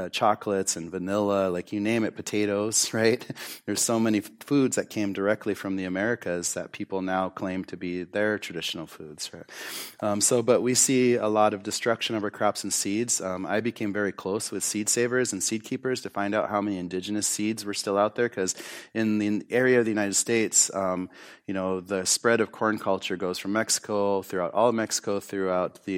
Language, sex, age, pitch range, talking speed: English, male, 30-49, 95-110 Hz, 210 wpm